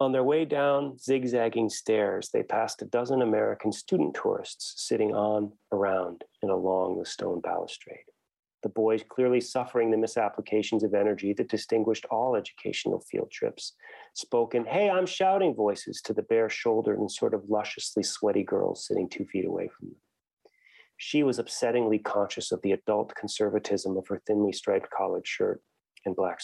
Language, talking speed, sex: English, 165 wpm, male